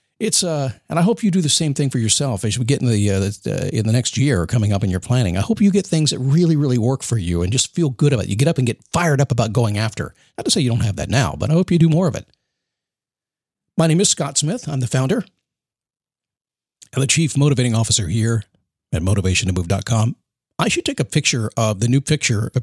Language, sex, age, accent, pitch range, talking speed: English, male, 50-69, American, 110-140 Hz, 265 wpm